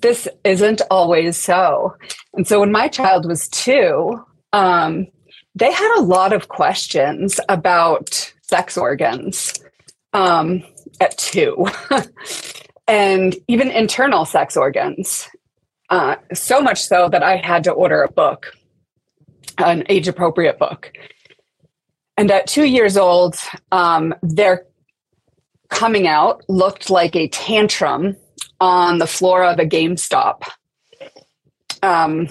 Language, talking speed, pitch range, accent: English, 120 wpm, 170-205 Hz, American